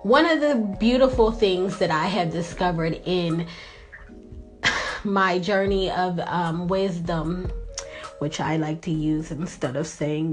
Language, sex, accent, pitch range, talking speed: English, female, American, 175-225 Hz, 135 wpm